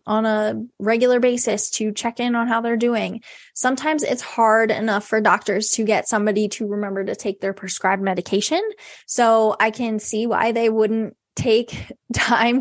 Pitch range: 215-250 Hz